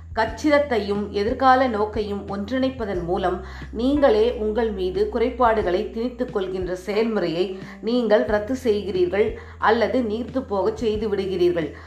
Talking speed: 95 wpm